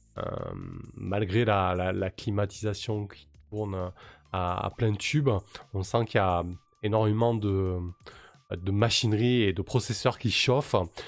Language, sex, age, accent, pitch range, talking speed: French, male, 20-39, French, 95-125 Hz, 140 wpm